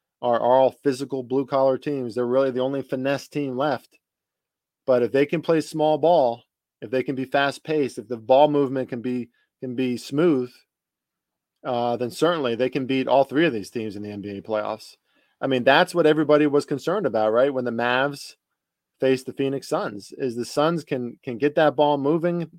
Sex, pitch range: male, 125-150 Hz